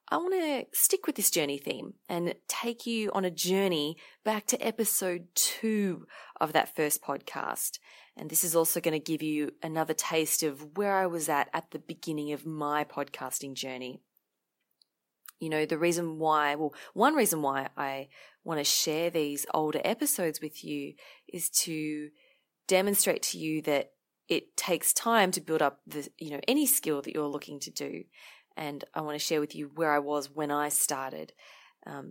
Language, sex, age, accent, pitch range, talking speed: English, female, 20-39, Australian, 145-180 Hz, 185 wpm